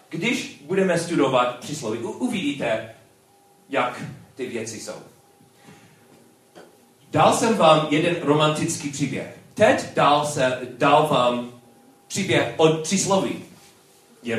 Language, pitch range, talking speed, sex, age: Czech, 120-170 Hz, 105 wpm, male, 40-59